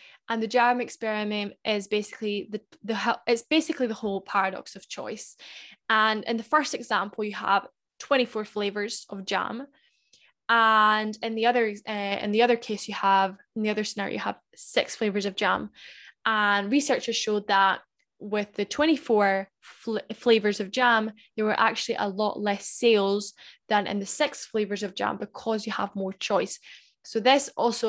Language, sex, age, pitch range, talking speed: English, female, 10-29, 205-230 Hz, 170 wpm